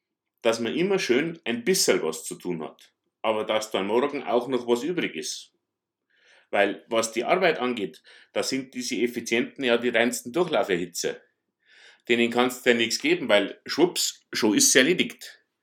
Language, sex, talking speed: German, male, 175 wpm